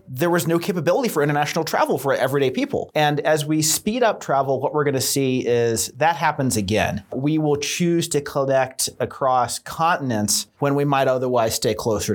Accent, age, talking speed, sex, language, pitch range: American, 30-49, 185 wpm, male, English, 130-155 Hz